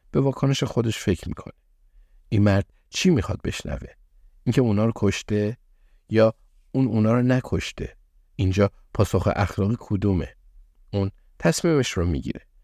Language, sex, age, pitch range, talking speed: Persian, male, 50-69, 85-110 Hz, 130 wpm